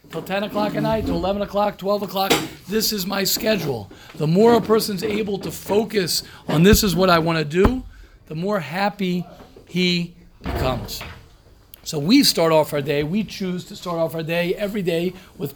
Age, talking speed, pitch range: 50-69, 195 wpm, 155-200 Hz